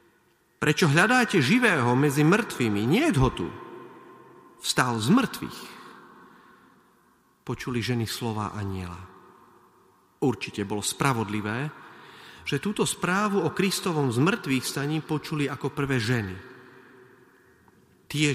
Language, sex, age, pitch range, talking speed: Slovak, male, 40-59, 125-175 Hz, 100 wpm